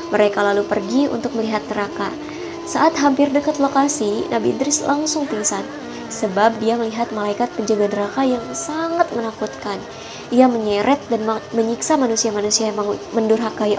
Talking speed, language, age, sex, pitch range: 130 wpm, Indonesian, 20-39, male, 215-275 Hz